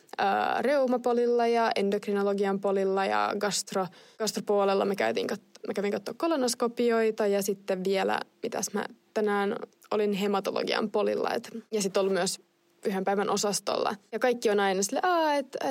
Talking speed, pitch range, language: 135 wpm, 195-240 Hz, Finnish